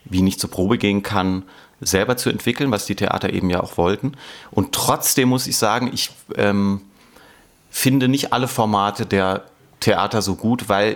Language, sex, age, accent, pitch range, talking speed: German, male, 30-49, German, 100-125 Hz, 175 wpm